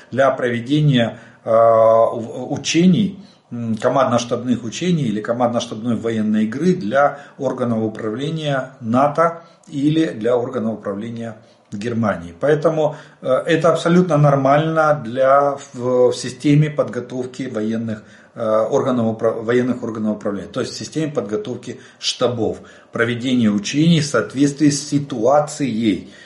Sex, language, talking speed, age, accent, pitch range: male, Russian, 95 wpm, 40-59, native, 115-150 Hz